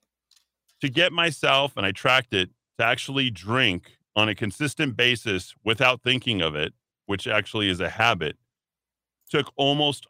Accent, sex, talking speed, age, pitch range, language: American, male, 150 wpm, 40-59, 105-135 Hz, English